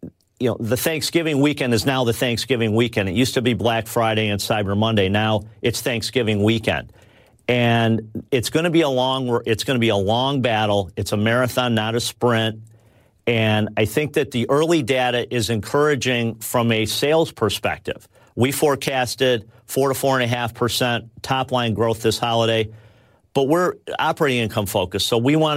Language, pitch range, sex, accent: English, 110-130 Hz, male, American